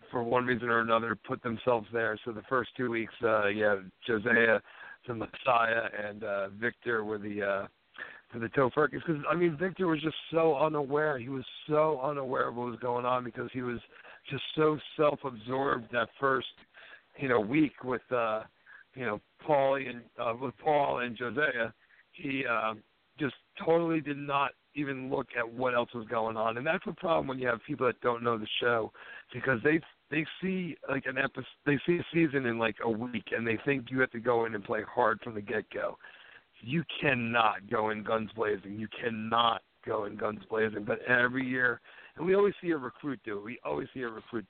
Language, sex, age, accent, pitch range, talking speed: English, male, 50-69, American, 115-140 Hz, 205 wpm